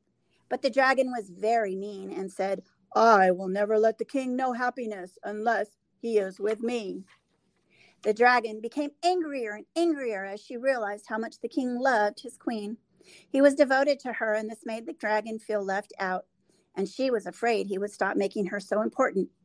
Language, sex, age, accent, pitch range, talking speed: English, female, 40-59, American, 210-265 Hz, 190 wpm